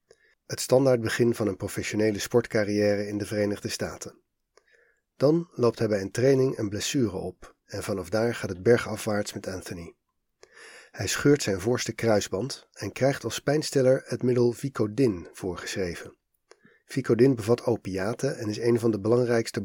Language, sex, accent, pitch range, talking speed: Dutch, male, Dutch, 105-125 Hz, 150 wpm